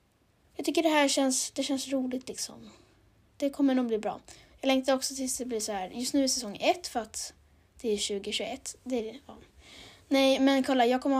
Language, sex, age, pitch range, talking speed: Swedish, female, 20-39, 215-265 Hz, 220 wpm